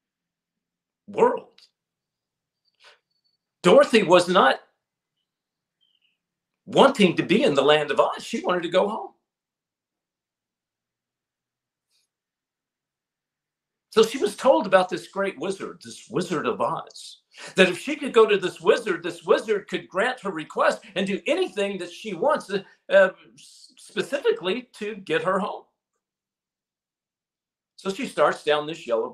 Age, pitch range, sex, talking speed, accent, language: 50-69, 165-225 Hz, male, 130 wpm, American, English